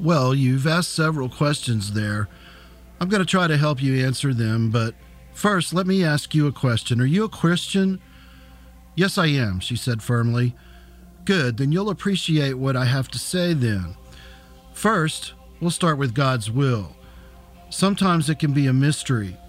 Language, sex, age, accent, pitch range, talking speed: English, male, 50-69, American, 110-155 Hz, 170 wpm